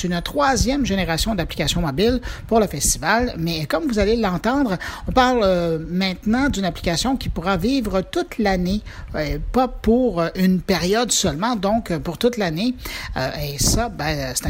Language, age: French, 50-69